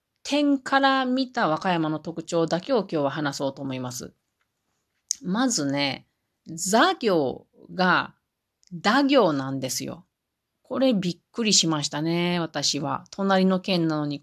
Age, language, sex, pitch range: 40-59, Japanese, female, 160-265 Hz